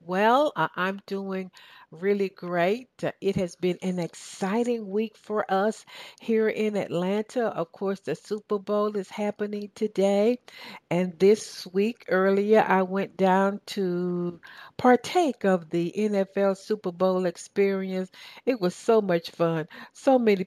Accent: American